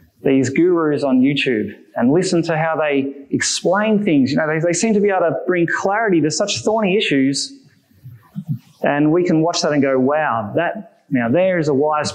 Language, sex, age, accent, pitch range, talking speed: English, male, 20-39, Australian, 155-220 Hz, 200 wpm